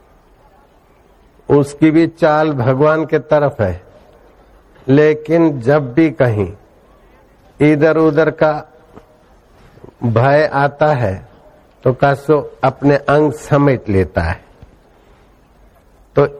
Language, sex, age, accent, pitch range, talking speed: Hindi, male, 60-79, native, 130-150 Hz, 90 wpm